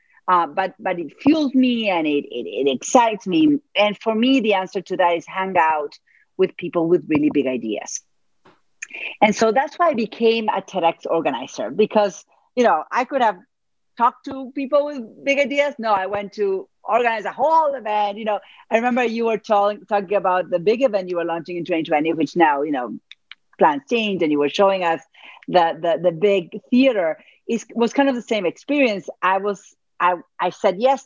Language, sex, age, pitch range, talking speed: English, female, 40-59, 180-255 Hz, 200 wpm